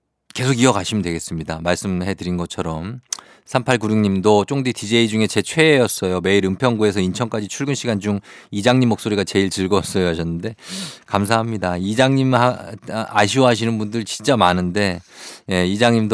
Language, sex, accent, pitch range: Korean, male, native, 95-130 Hz